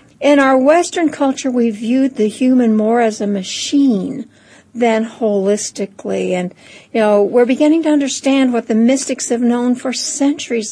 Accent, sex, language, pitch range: American, female, English, 205-255 Hz